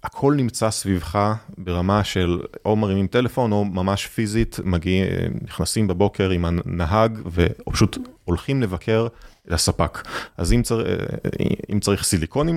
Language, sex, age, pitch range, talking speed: Hebrew, male, 30-49, 90-115 Hz, 130 wpm